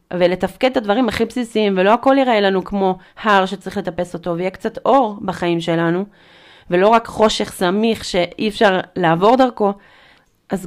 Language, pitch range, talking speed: Hebrew, 175-225 Hz, 155 wpm